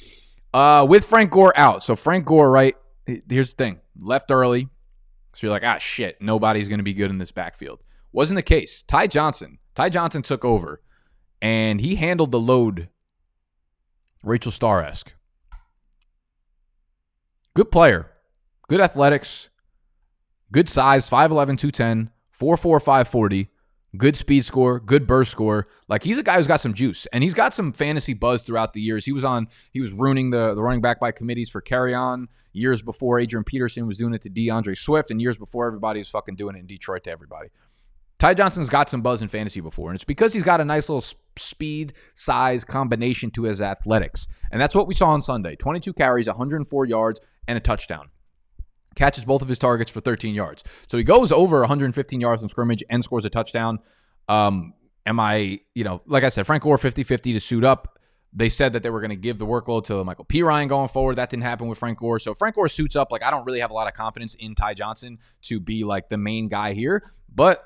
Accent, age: American, 20-39